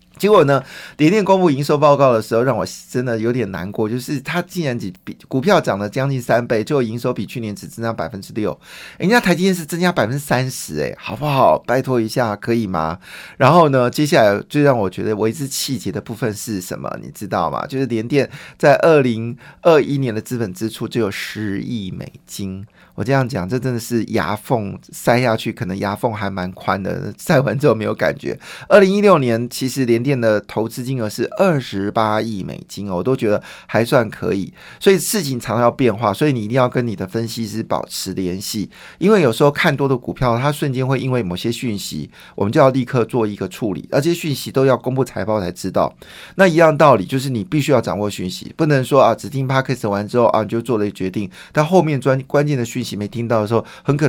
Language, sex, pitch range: Chinese, male, 105-135 Hz